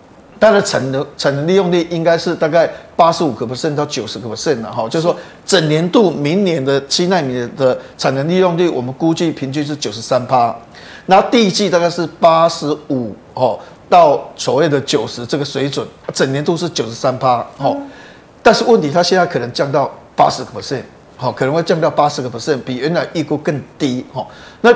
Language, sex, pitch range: Chinese, male, 145-195 Hz